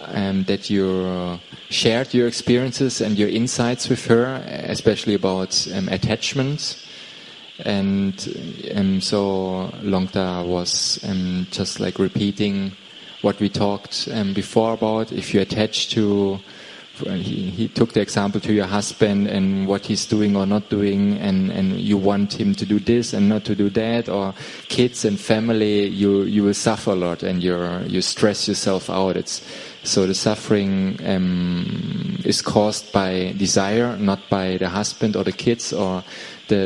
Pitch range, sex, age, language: 95-110 Hz, male, 20-39, Thai